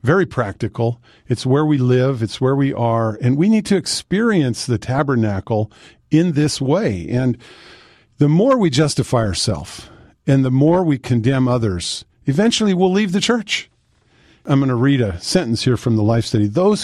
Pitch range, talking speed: 115-165 Hz, 175 wpm